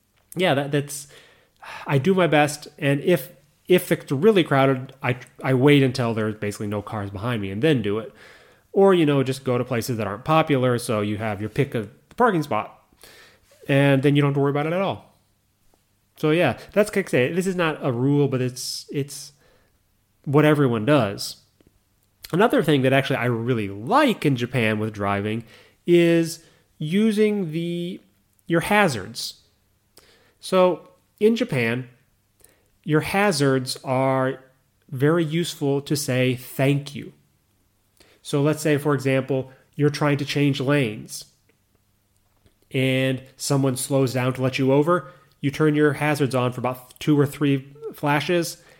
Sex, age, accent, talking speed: male, 30-49, American, 160 wpm